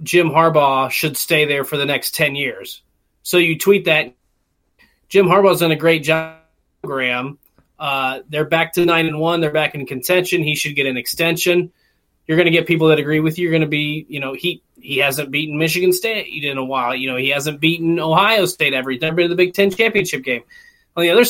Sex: male